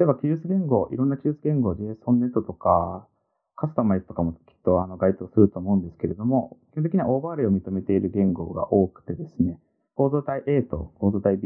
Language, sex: Japanese, male